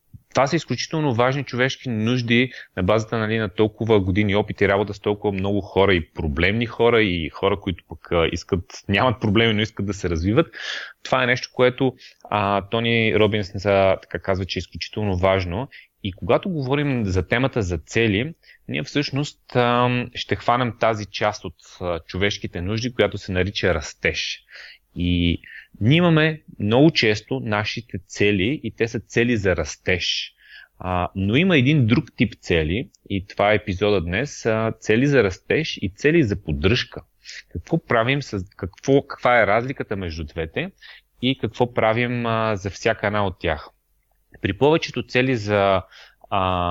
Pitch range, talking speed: 95-125 Hz, 160 wpm